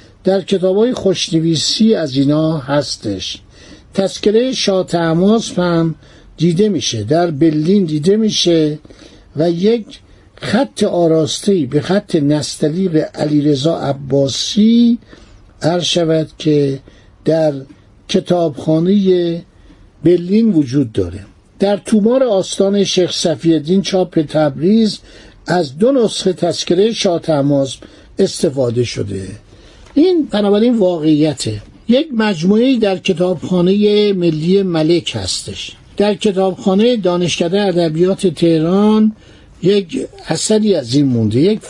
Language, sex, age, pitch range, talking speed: Persian, male, 60-79, 145-200 Hz, 95 wpm